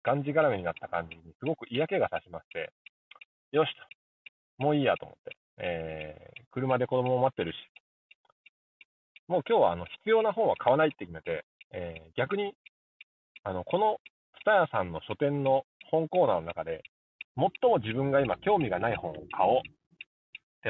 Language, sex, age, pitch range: Japanese, male, 30-49, 120-200 Hz